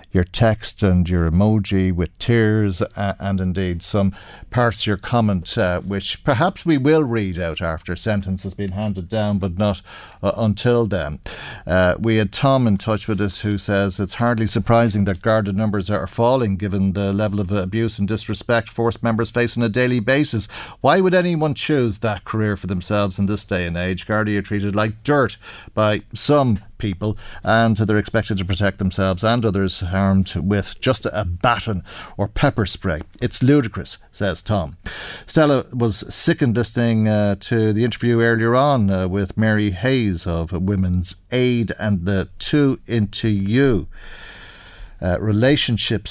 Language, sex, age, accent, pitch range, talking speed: English, male, 50-69, Irish, 95-115 Hz, 170 wpm